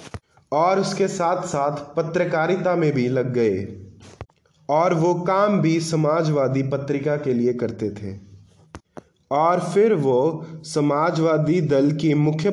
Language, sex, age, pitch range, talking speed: Punjabi, male, 20-39, 140-175 Hz, 120 wpm